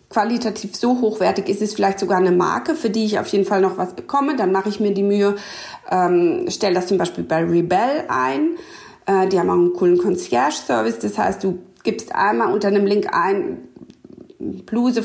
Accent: German